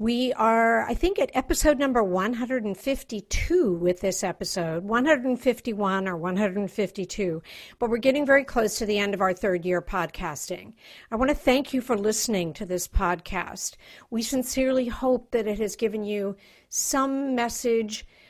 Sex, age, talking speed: female, 50-69, 155 wpm